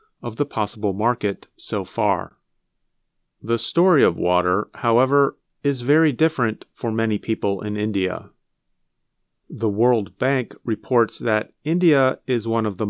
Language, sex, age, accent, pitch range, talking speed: English, male, 40-59, American, 110-155 Hz, 135 wpm